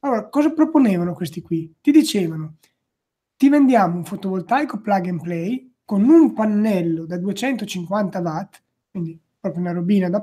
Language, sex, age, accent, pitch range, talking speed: Italian, male, 20-39, native, 185-245 Hz, 145 wpm